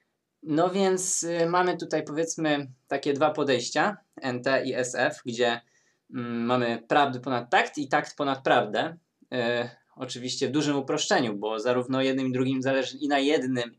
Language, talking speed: Polish, 145 wpm